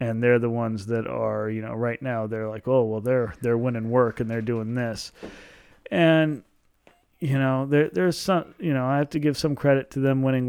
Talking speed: 225 wpm